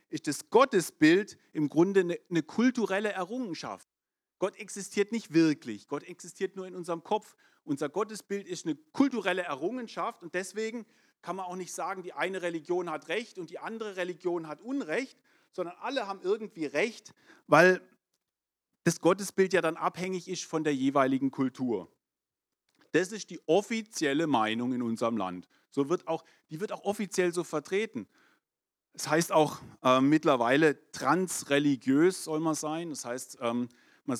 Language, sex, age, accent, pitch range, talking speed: German, male, 40-59, German, 140-190 Hz, 155 wpm